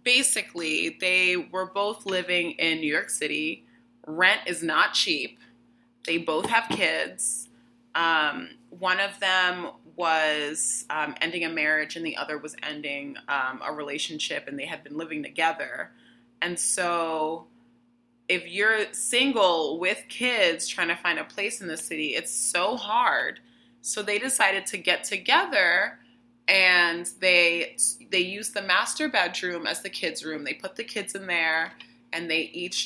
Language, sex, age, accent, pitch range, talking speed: English, female, 20-39, American, 160-220 Hz, 155 wpm